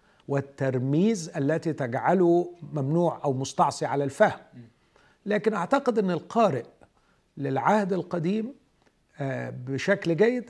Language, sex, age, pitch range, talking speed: Arabic, male, 50-69, 130-165 Hz, 90 wpm